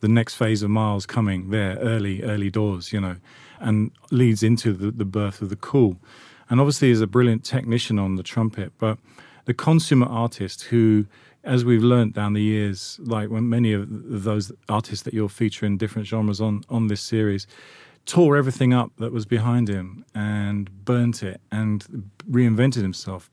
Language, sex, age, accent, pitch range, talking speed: English, male, 40-59, British, 105-120 Hz, 185 wpm